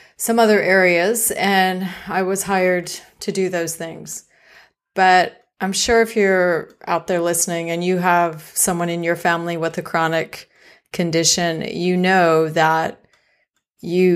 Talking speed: 145 wpm